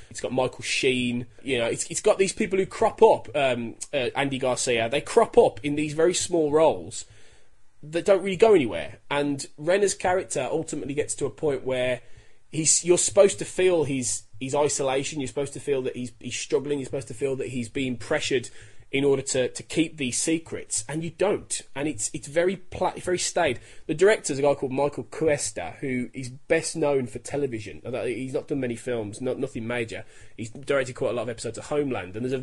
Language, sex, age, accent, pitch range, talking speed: English, male, 20-39, British, 120-160 Hz, 210 wpm